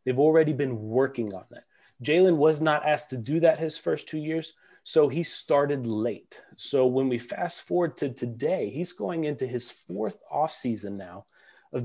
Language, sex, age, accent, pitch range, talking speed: English, male, 30-49, American, 125-155 Hz, 180 wpm